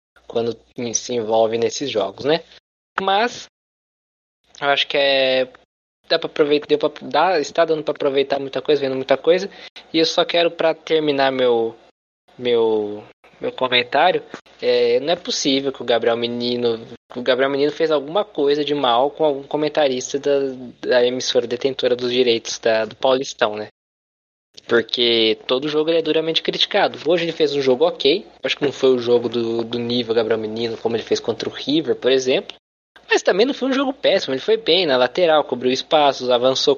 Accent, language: Brazilian, Portuguese